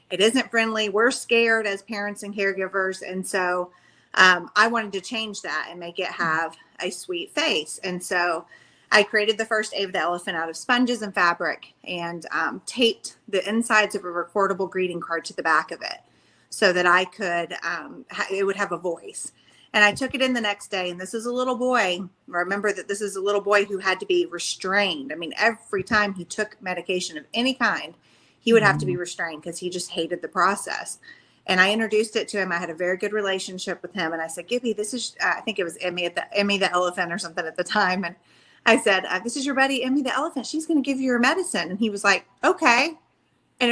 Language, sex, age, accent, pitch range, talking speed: English, female, 30-49, American, 185-240 Hz, 235 wpm